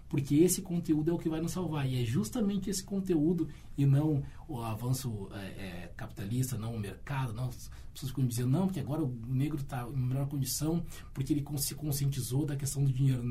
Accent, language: Brazilian, Portuguese